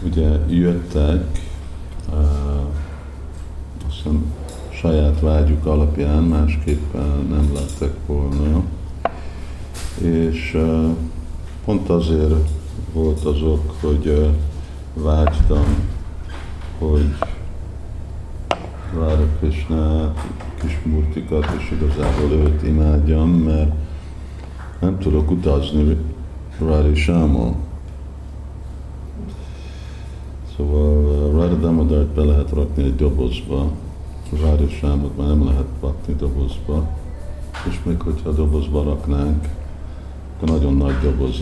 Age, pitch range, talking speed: 50-69, 70-80 Hz, 80 wpm